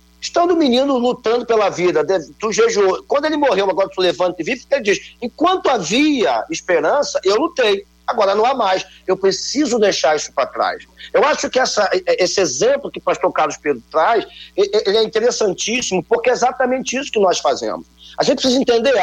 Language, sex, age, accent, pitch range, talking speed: Portuguese, male, 50-69, Brazilian, 190-270 Hz, 190 wpm